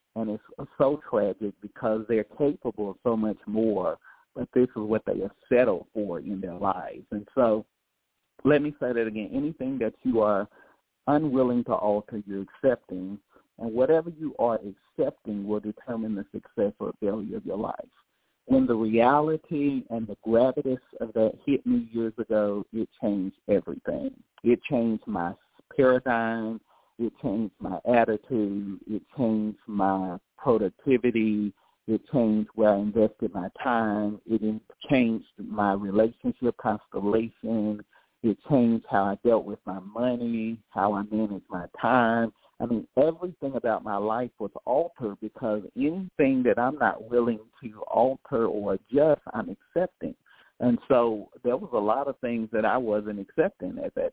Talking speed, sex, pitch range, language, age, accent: 155 wpm, male, 105-125 Hz, English, 50-69, American